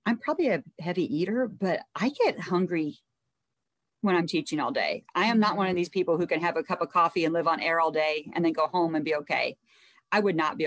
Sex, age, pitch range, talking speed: female, 40-59, 165-210 Hz, 255 wpm